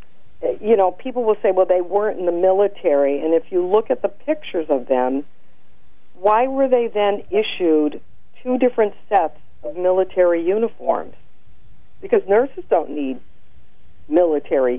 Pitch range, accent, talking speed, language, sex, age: 150-225 Hz, American, 145 wpm, English, female, 50-69